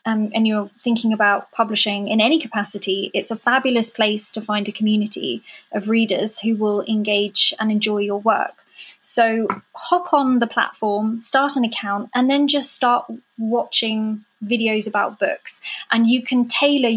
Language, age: English, 20-39